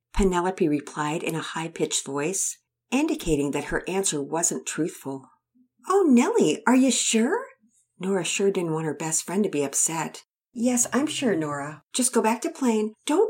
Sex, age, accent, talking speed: female, 50-69, American, 165 wpm